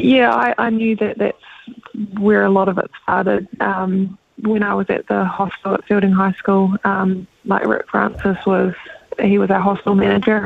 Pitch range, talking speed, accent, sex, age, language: 190-205 Hz, 190 wpm, Australian, female, 20-39, English